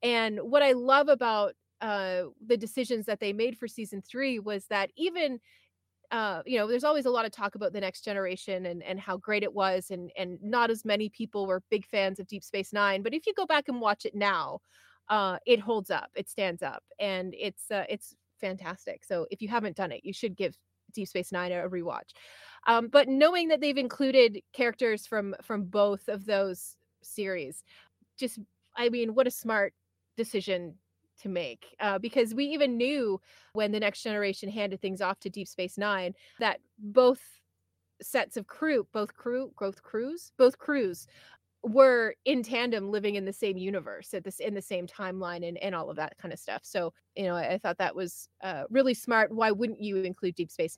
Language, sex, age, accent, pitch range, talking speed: English, female, 30-49, American, 190-235 Hz, 205 wpm